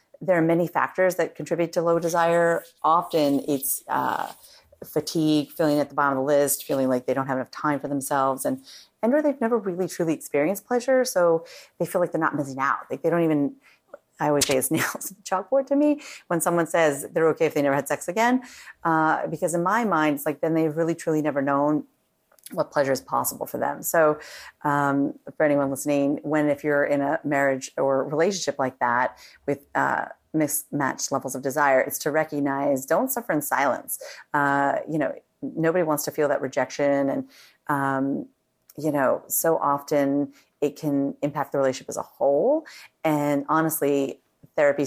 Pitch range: 140-170 Hz